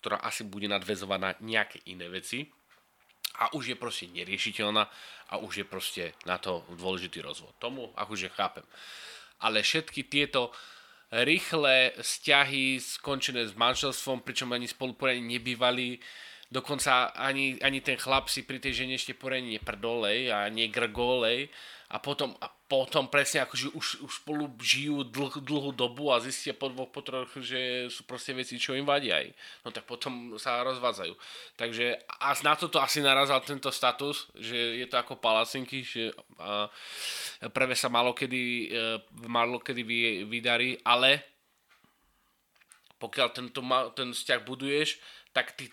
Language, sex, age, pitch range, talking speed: Slovak, male, 20-39, 115-135 Hz, 145 wpm